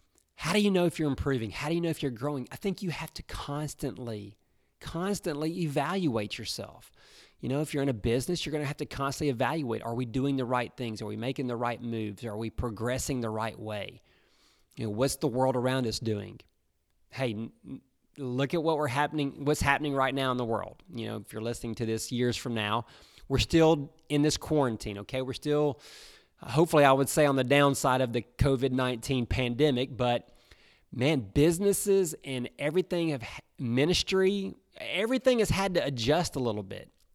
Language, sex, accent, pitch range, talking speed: English, male, American, 120-160 Hz, 195 wpm